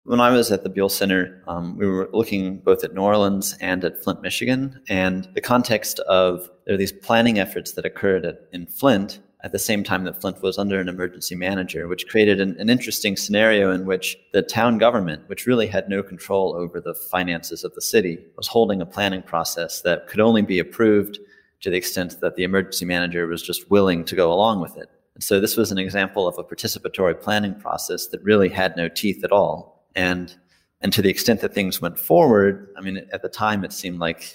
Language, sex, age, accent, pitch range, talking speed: English, male, 30-49, American, 90-110 Hz, 220 wpm